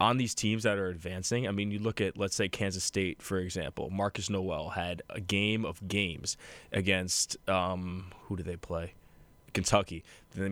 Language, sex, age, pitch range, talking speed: English, male, 20-39, 90-110 Hz, 185 wpm